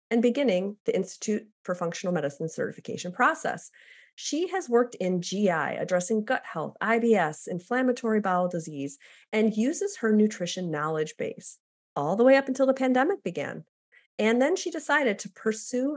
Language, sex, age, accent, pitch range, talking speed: English, female, 40-59, American, 175-240 Hz, 155 wpm